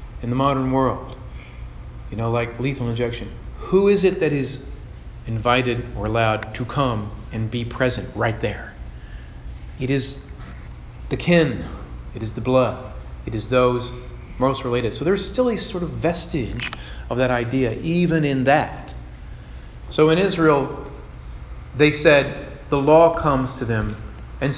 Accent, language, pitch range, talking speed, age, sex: American, English, 110-155 Hz, 150 wpm, 40-59, male